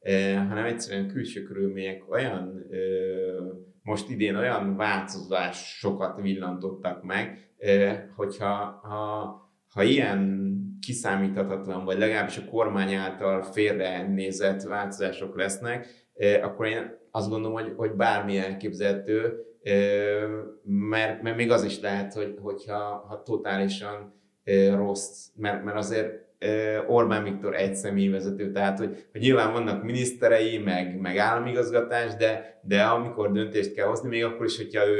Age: 30-49